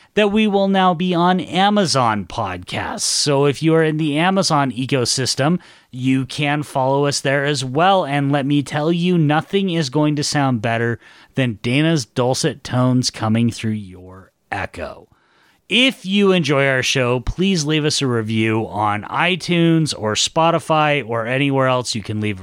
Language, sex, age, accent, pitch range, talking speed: English, male, 30-49, American, 120-170 Hz, 165 wpm